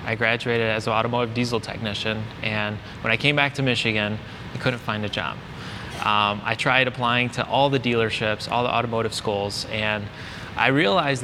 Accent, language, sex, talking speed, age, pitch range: American, English, male, 180 wpm, 20-39, 110-130 Hz